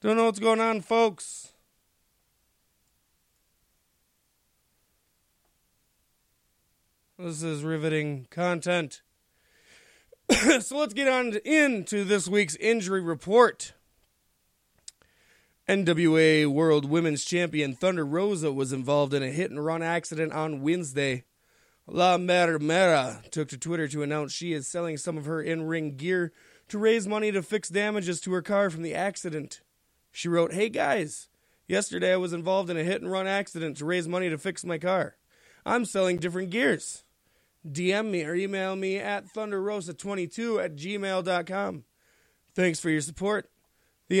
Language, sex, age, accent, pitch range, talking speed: English, male, 20-39, American, 160-205 Hz, 130 wpm